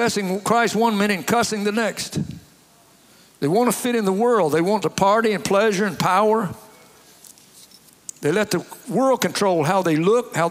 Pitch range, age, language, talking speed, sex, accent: 175-220 Hz, 60-79, English, 185 wpm, male, American